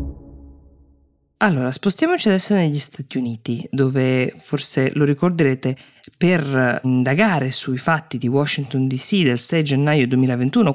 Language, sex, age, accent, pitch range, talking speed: Italian, female, 20-39, native, 130-175 Hz, 115 wpm